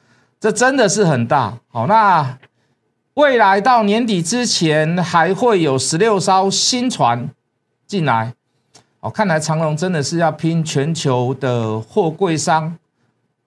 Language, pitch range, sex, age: Chinese, 130-190 Hz, male, 50-69